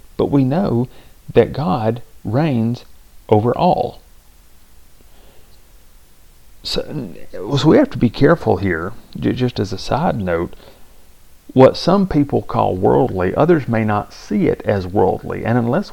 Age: 40-59